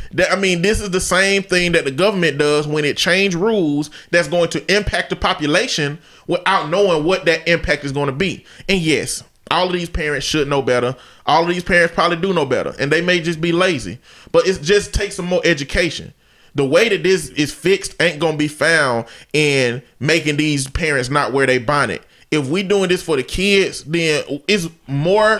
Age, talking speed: 20-39, 215 wpm